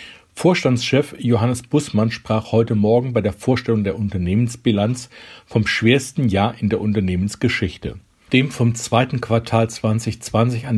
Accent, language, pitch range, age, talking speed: German, German, 105-125 Hz, 50-69, 130 wpm